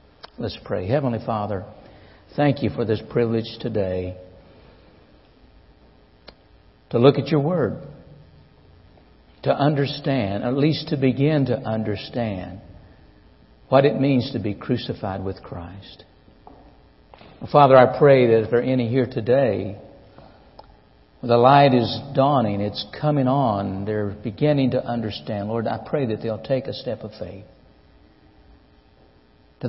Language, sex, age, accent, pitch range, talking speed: English, male, 60-79, American, 95-130 Hz, 125 wpm